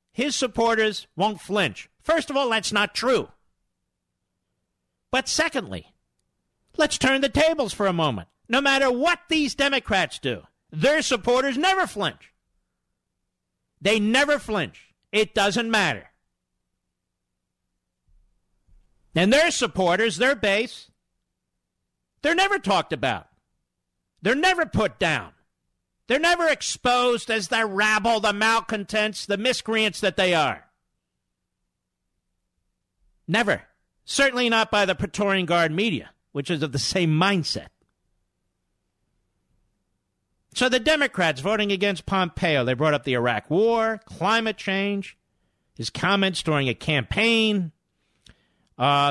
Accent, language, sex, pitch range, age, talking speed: American, English, male, 155-245 Hz, 50-69, 115 wpm